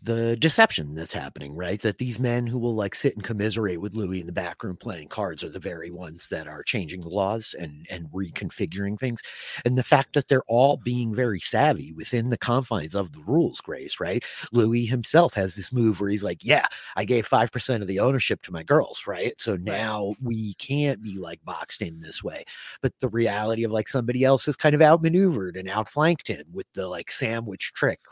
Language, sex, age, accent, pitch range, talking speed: English, male, 30-49, American, 100-130 Hz, 215 wpm